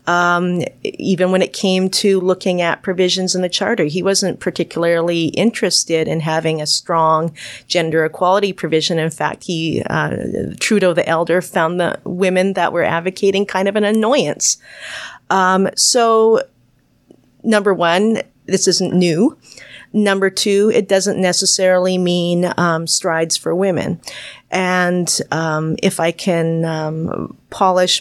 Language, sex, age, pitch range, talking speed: English, female, 30-49, 170-195 Hz, 135 wpm